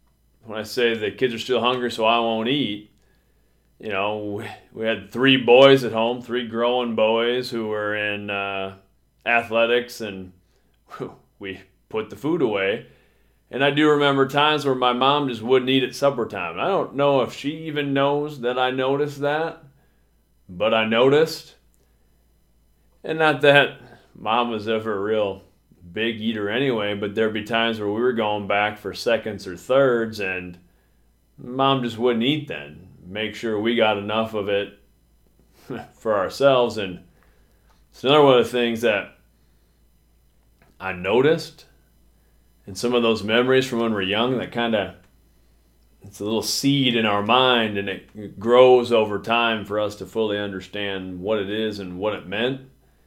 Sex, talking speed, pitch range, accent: male, 165 wpm, 95-125 Hz, American